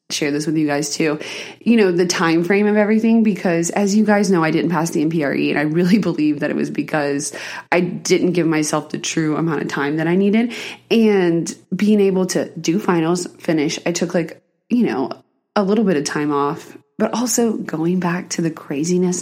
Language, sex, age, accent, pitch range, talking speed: English, female, 20-39, American, 160-200 Hz, 210 wpm